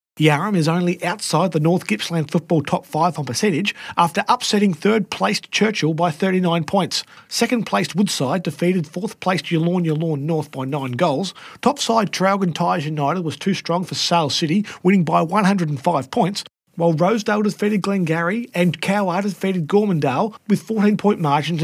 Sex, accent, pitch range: male, Australian, 165-205 Hz